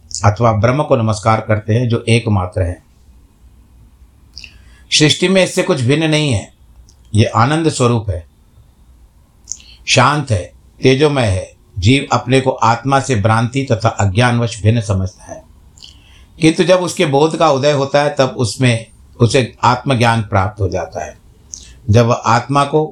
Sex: male